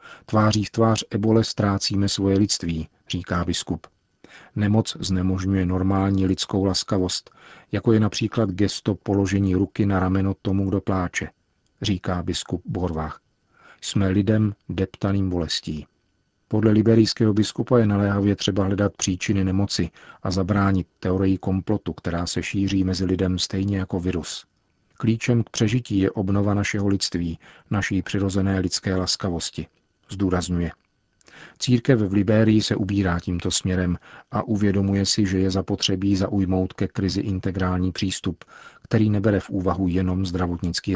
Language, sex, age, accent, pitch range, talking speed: Czech, male, 40-59, native, 90-105 Hz, 130 wpm